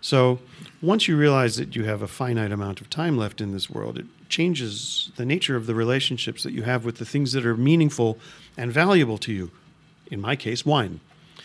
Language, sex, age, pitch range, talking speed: English, male, 40-59, 110-135 Hz, 210 wpm